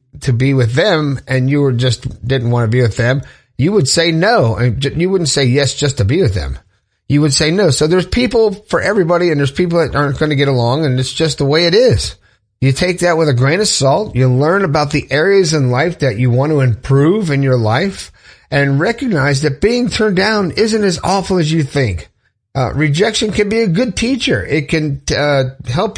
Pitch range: 125-160 Hz